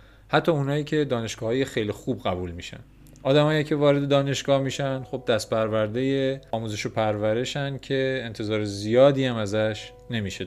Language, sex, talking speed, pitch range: Persian, male, 150 wpm, 100-135 Hz